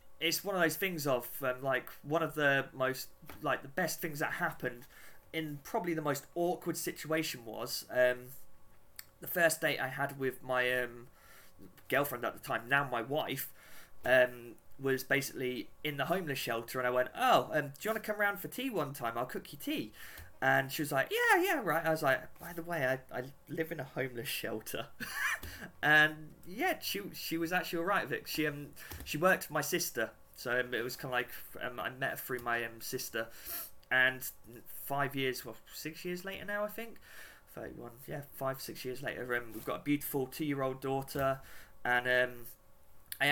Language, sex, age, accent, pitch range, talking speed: English, male, 20-39, British, 125-160 Hz, 200 wpm